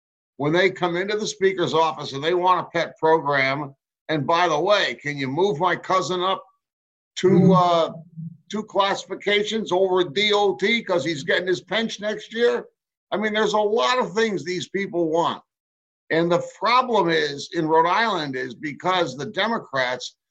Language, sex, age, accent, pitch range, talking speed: English, male, 60-79, American, 160-210 Hz, 170 wpm